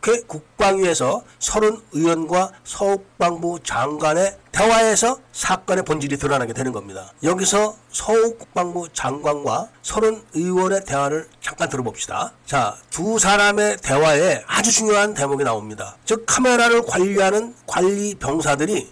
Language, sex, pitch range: Korean, male, 170-225 Hz